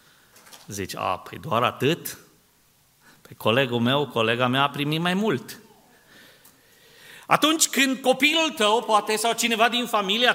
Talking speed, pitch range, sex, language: 140 wpm, 120-195 Hz, male, Romanian